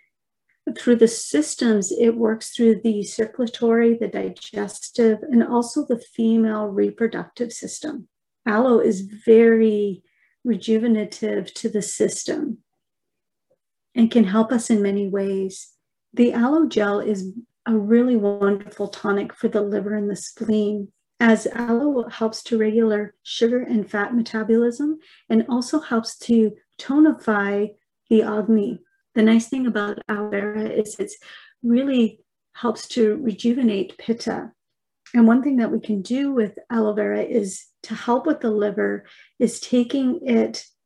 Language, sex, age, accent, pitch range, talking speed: English, female, 40-59, American, 210-240 Hz, 135 wpm